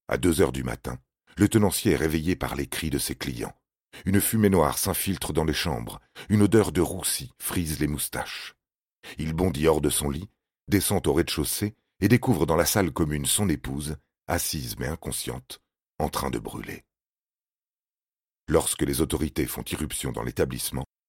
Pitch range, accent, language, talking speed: 70-95 Hz, French, French, 170 wpm